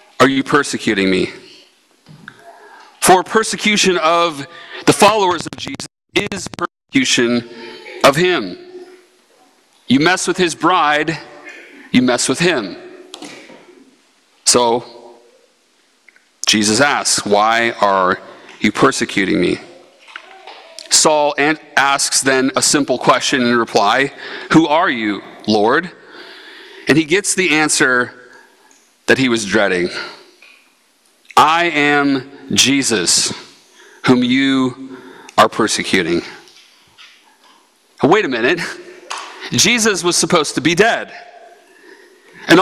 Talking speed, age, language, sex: 100 wpm, 40-59, English, male